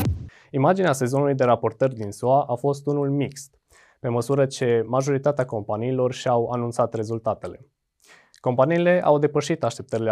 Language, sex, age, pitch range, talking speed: Romanian, male, 20-39, 110-140 Hz, 130 wpm